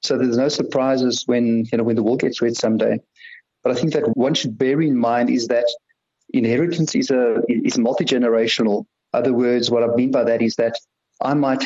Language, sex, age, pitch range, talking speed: English, male, 50-69, 120-155 Hz, 210 wpm